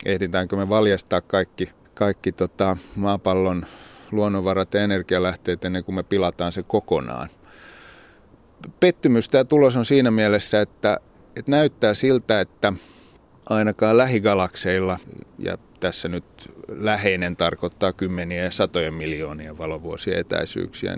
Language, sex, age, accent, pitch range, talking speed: Finnish, male, 30-49, native, 90-105 Hz, 115 wpm